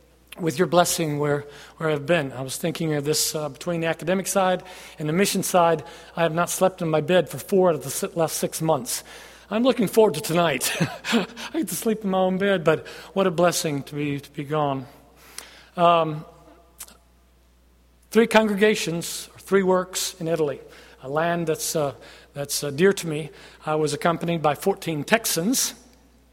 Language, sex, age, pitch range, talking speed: English, male, 40-59, 155-190 Hz, 185 wpm